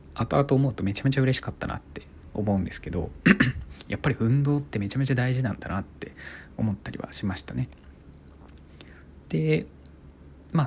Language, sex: Japanese, male